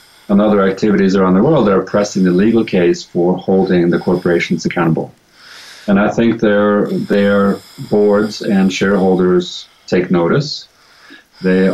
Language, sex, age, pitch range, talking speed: English, male, 40-59, 90-115 Hz, 145 wpm